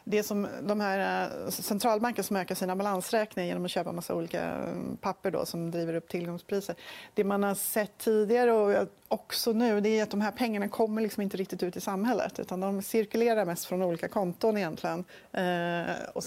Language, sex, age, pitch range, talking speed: Swedish, female, 30-49, 165-205 Hz, 190 wpm